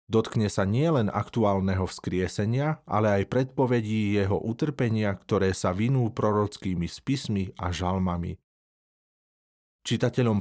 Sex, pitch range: male, 95-120 Hz